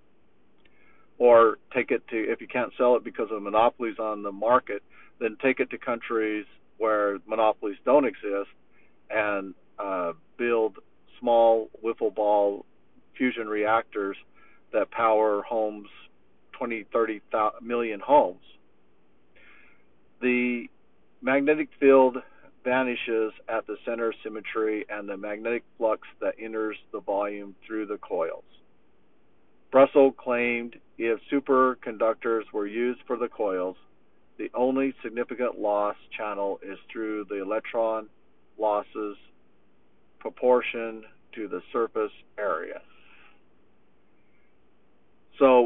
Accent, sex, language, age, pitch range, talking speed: American, male, English, 50-69, 105-125 Hz, 110 wpm